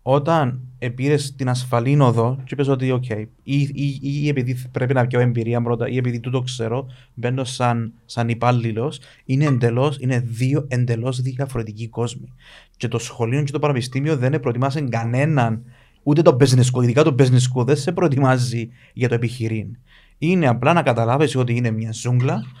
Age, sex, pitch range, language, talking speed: 30-49, male, 120-135 Hz, Greek, 170 wpm